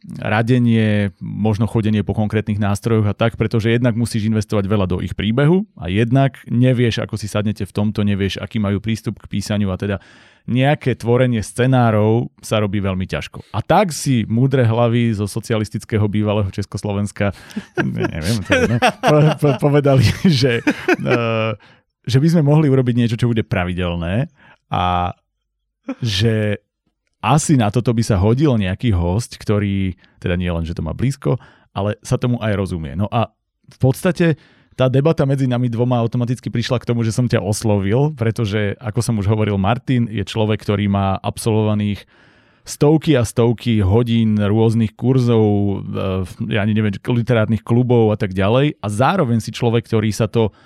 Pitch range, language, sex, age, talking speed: 105-125 Hz, Slovak, male, 30-49, 160 wpm